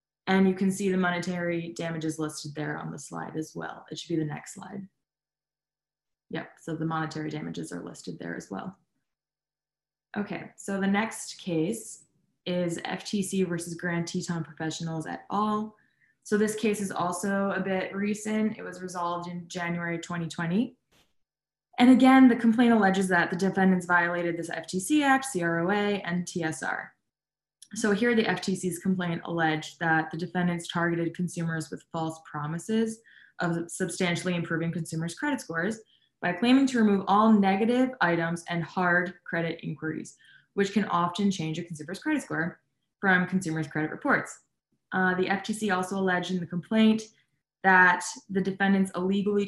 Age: 20-39